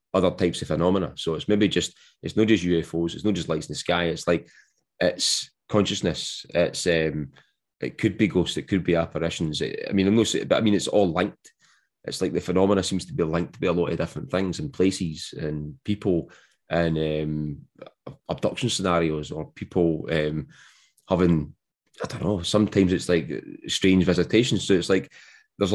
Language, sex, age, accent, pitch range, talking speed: English, male, 20-39, British, 85-95 Hz, 190 wpm